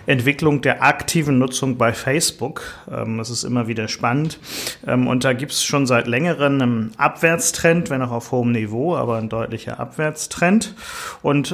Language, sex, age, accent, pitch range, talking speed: German, male, 40-59, German, 120-135 Hz, 155 wpm